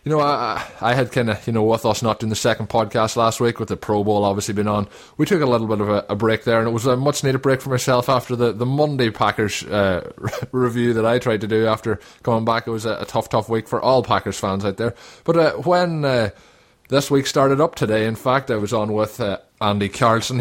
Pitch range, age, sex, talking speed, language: 110-125 Hz, 20-39, male, 270 wpm, English